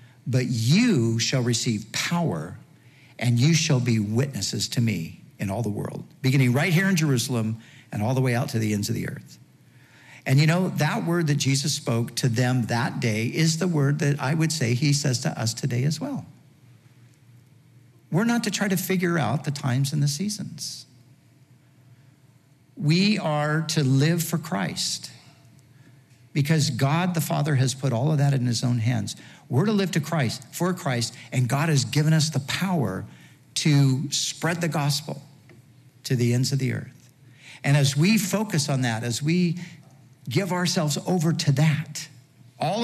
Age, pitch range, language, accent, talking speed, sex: 50-69, 125-160 Hz, English, American, 180 wpm, male